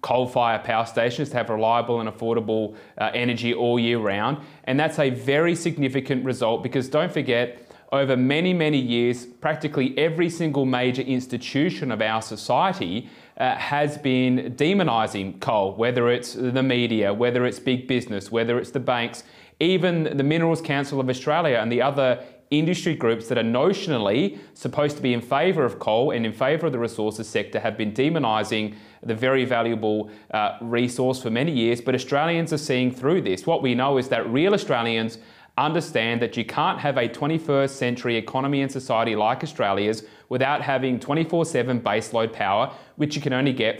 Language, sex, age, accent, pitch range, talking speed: English, male, 30-49, Australian, 115-145 Hz, 175 wpm